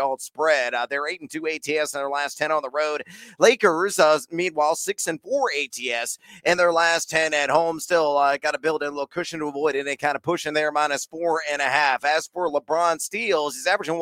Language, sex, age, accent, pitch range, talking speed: English, male, 40-59, American, 150-190 Hz, 225 wpm